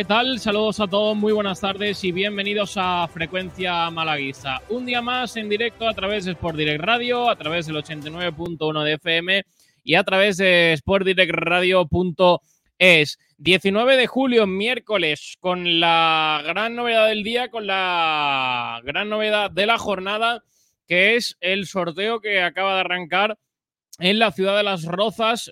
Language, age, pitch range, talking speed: Spanish, 20-39, 150-200 Hz, 165 wpm